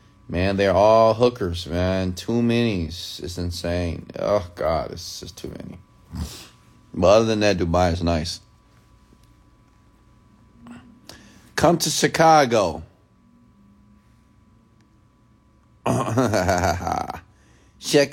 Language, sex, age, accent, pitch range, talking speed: English, male, 30-49, American, 85-110 Hz, 85 wpm